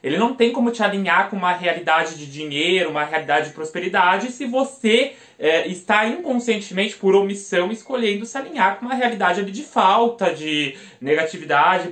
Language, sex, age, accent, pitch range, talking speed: Portuguese, male, 20-39, Brazilian, 185-230 Hz, 160 wpm